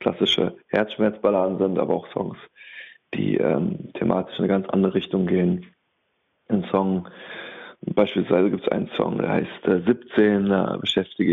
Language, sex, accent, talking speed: German, male, German, 150 wpm